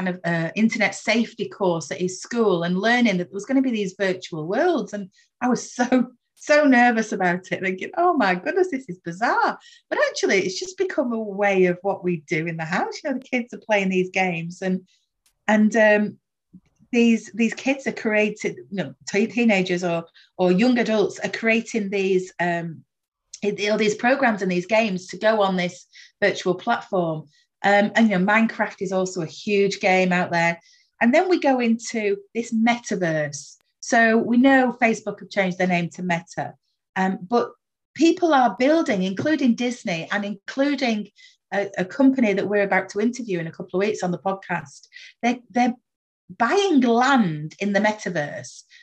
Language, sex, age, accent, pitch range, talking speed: English, female, 30-49, British, 185-240 Hz, 185 wpm